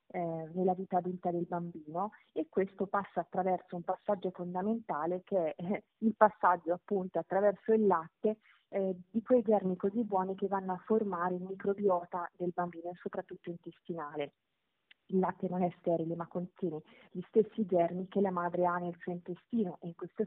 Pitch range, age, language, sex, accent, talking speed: 170-195 Hz, 30-49, Italian, female, native, 170 wpm